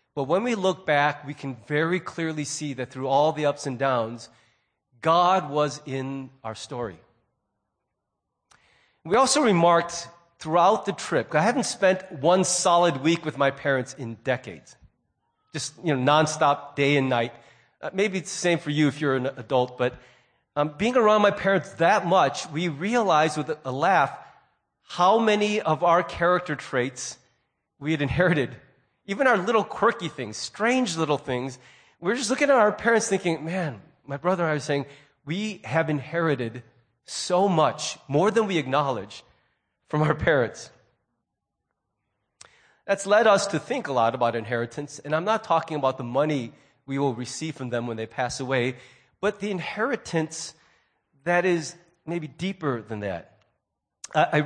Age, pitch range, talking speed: 40-59, 135-180 Hz, 165 wpm